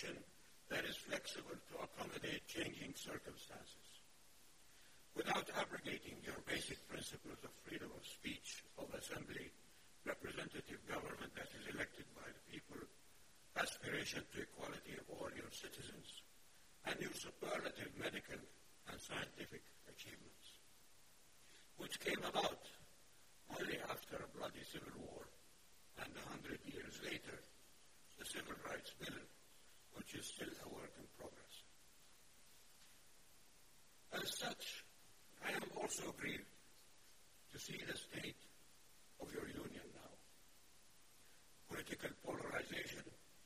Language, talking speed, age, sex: English, 110 wpm, 60-79, male